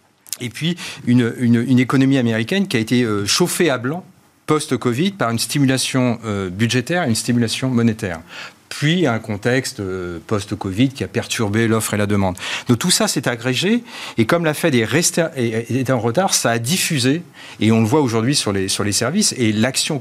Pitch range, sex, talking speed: 105-145 Hz, male, 180 wpm